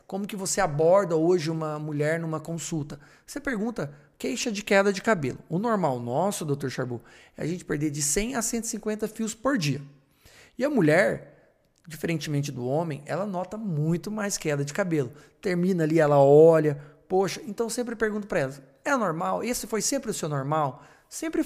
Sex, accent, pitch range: male, Brazilian, 150-210 Hz